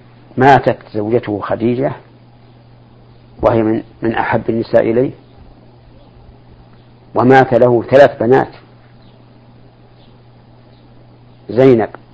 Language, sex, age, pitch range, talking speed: Arabic, male, 50-69, 105-130 Hz, 70 wpm